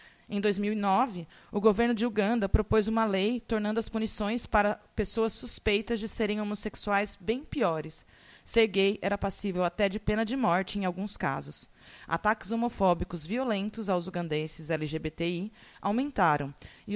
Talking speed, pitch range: 140 wpm, 185-235 Hz